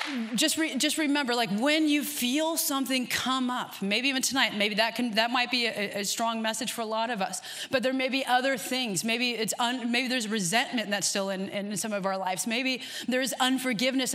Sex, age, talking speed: female, 30-49, 210 wpm